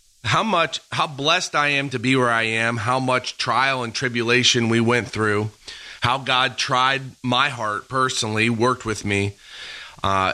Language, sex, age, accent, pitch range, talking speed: English, male, 30-49, American, 115-145 Hz, 170 wpm